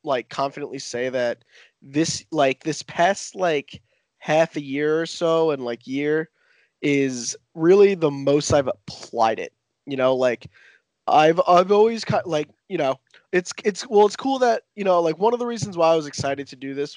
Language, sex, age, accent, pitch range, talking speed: English, male, 20-39, American, 130-160 Hz, 190 wpm